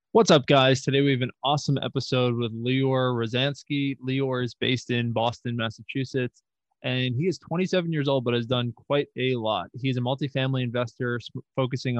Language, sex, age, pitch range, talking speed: English, male, 20-39, 115-130 Hz, 175 wpm